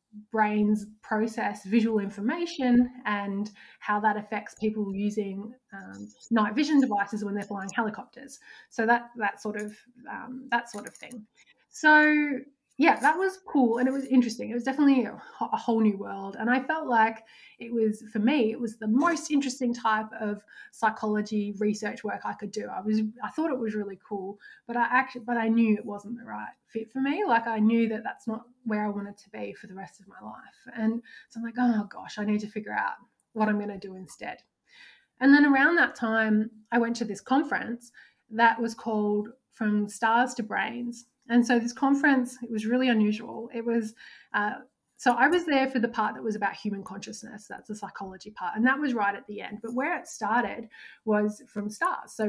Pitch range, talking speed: 210-250 Hz, 205 wpm